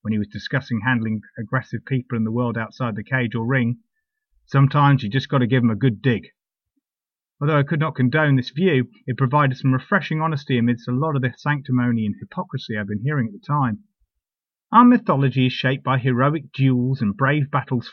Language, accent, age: English, British, 30-49